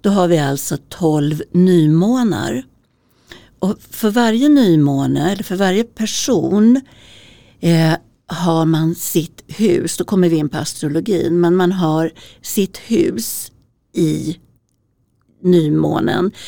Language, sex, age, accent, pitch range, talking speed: Swedish, female, 60-79, native, 150-195 Hz, 115 wpm